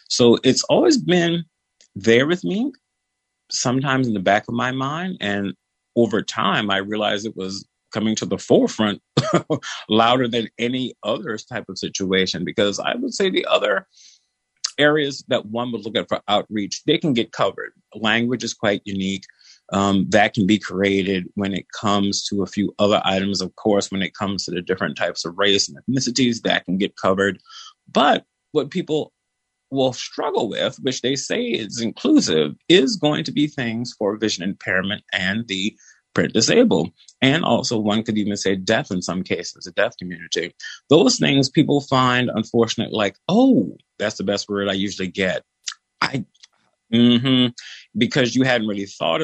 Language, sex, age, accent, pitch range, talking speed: English, male, 30-49, American, 100-125 Hz, 170 wpm